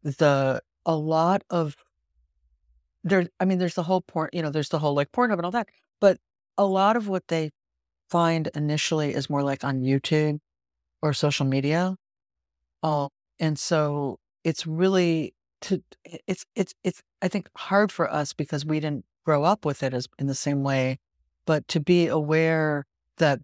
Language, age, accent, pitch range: English, 50-69, American, 130-165 Hz